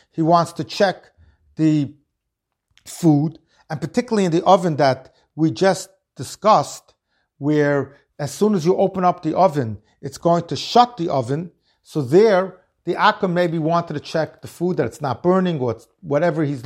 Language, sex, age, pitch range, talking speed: English, male, 50-69, 145-185 Hz, 175 wpm